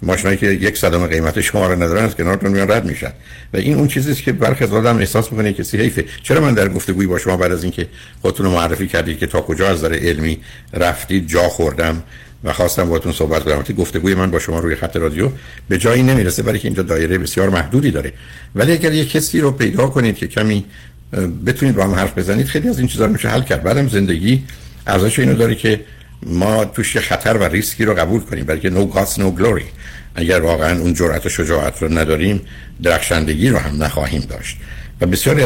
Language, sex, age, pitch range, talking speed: Persian, male, 60-79, 85-115 Hz, 200 wpm